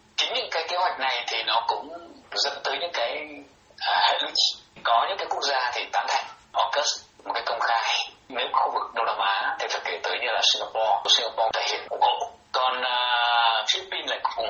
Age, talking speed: 30-49, 205 wpm